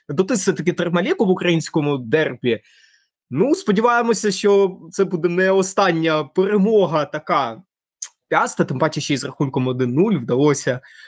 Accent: native